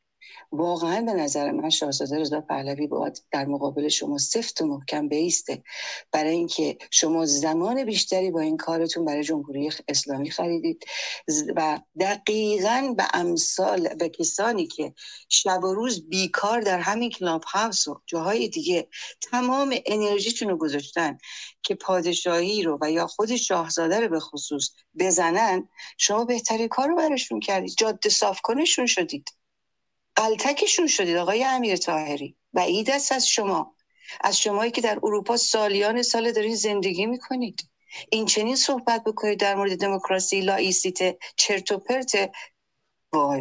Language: Persian